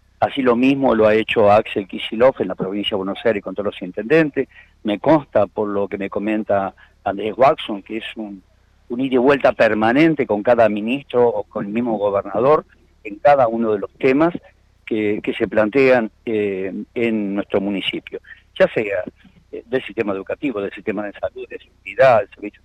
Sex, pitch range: male, 100-130 Hz